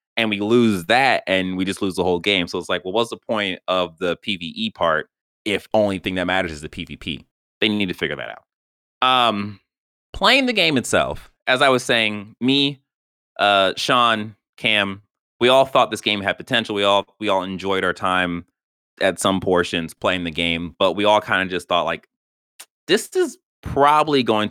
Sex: male